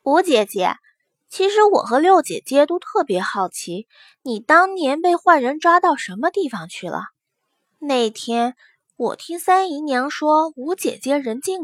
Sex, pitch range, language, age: female, 235-360 Hz, Chinese, 20-39